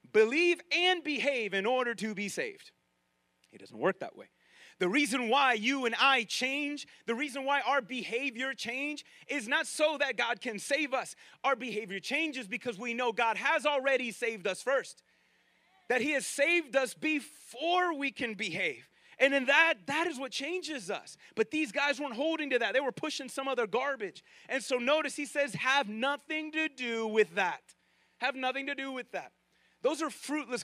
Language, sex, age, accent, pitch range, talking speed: English, male, 30-49, American, 210-290 Hz, 190 wpm